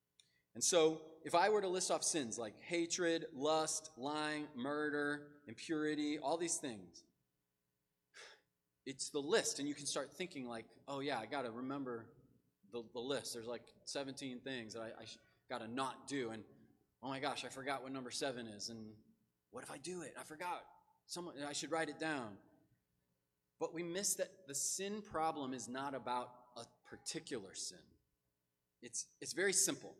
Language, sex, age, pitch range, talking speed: English, male, 30-49, 110-155 Hz, 175 wpm